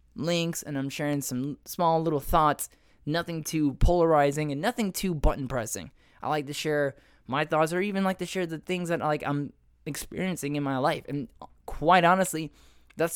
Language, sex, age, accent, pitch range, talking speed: English, male, 10-29, American, 140-175 Hz, 180 wpm